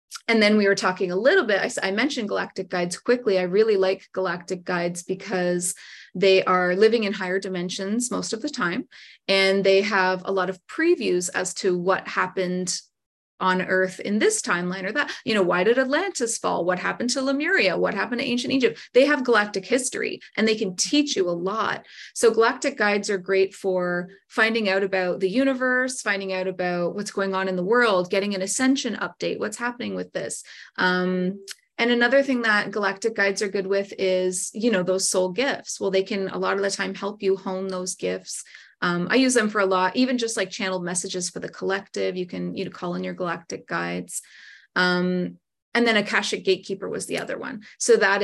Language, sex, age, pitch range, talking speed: English, female, 30-49, 185-230 Hz, 205 wpm